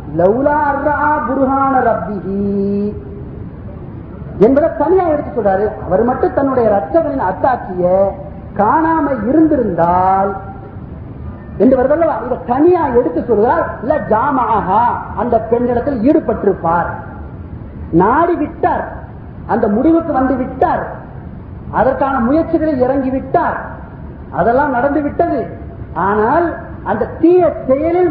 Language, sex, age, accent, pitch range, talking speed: Tamil, male, 40-59, native, 215-315 Hz, 55 wpm